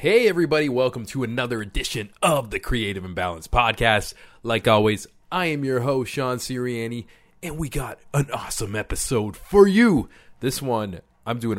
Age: 20-39